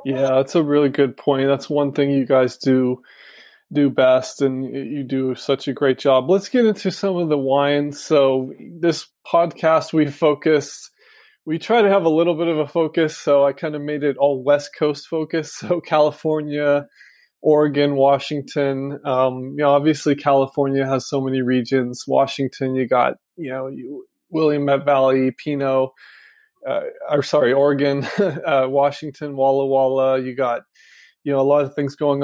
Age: 20-39